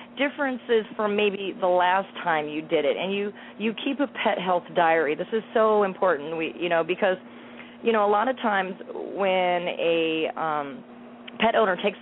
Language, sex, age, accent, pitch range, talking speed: English, female, 30-49, American, 165-205 Hz, 185 wpm